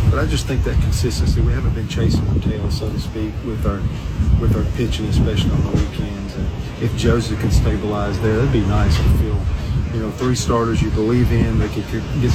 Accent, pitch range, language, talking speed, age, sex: American, 100-115 Hz, English, 225 wpm, 40-59, male